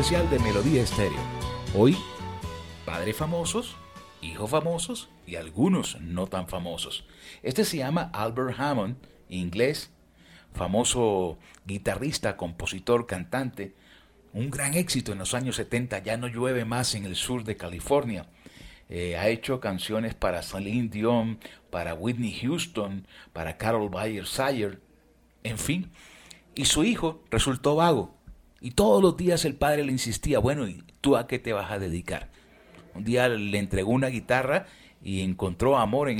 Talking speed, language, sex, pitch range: 145 wpm, Spanish, male, 95-140 Hz